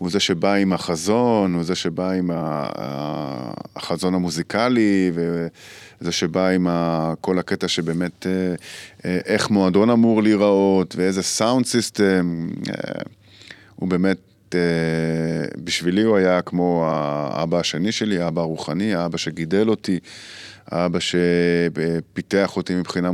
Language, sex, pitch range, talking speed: Hebrew, male, 85-100 Hz, 110 wpm